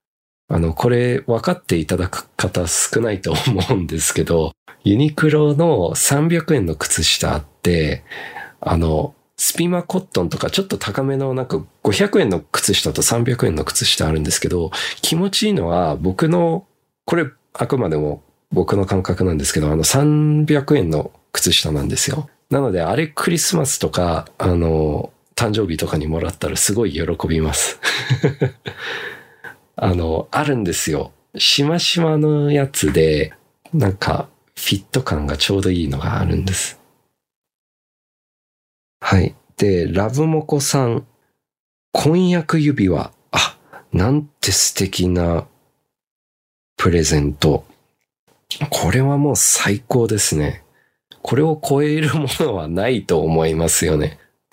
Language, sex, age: Japanese, male, 40-59